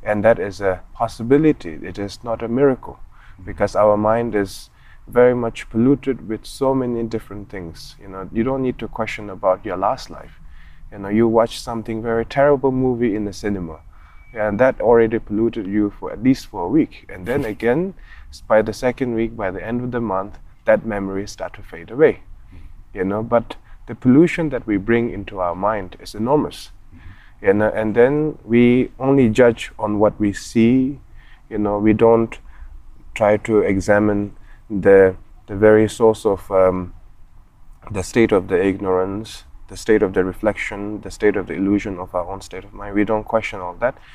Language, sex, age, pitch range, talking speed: German, male, 20-39, 95-115 Hz, 185 wpm